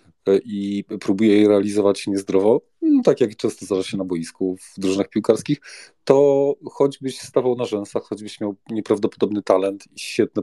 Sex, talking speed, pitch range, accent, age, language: male, 155 wpm, 105-135 Hz, native, 30-49, Polish